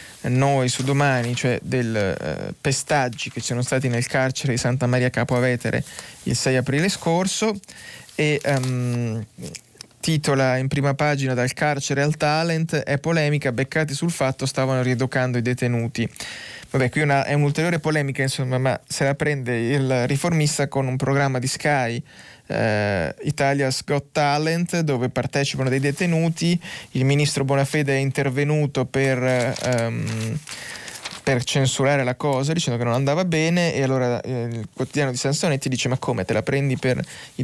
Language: Italian